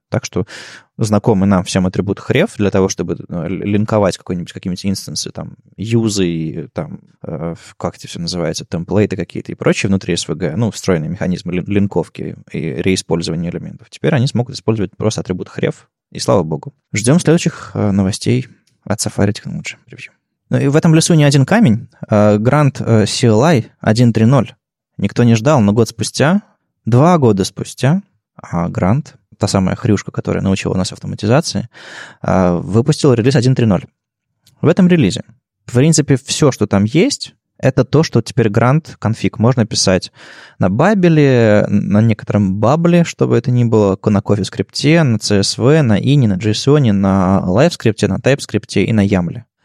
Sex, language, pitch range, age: male, Russian, 100-130 Hz, 20-39